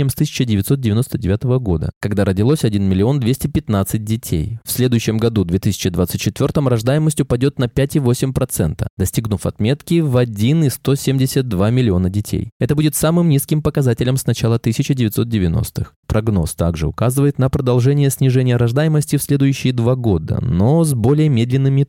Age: 20-39